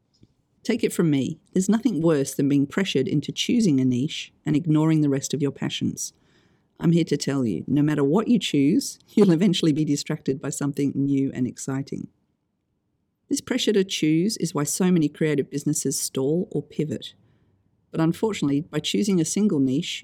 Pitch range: 140-190 Hz